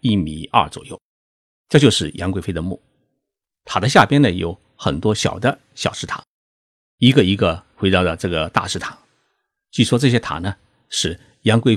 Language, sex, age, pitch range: Chinese, male, 50-69, 85-125 Hz